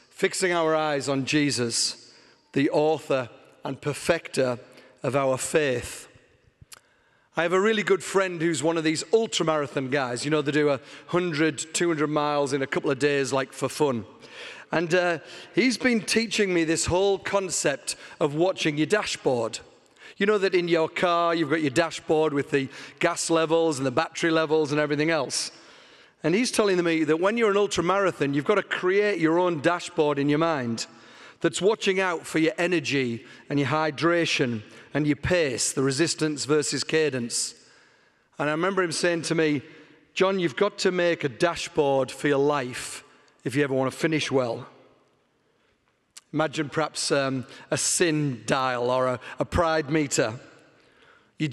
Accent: British